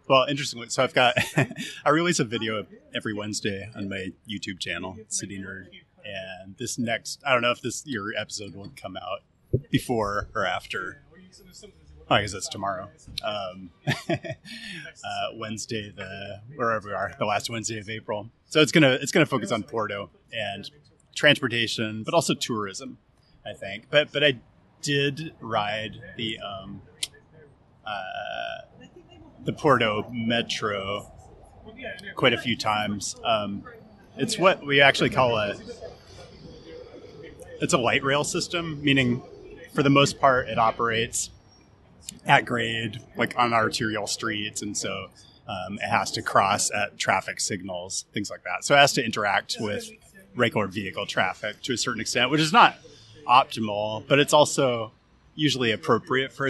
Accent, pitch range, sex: American, 105-140 Hz, male